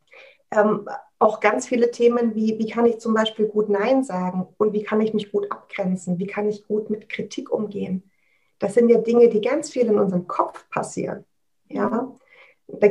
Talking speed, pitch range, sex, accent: 185 wpm, 205-240 Hz, female, German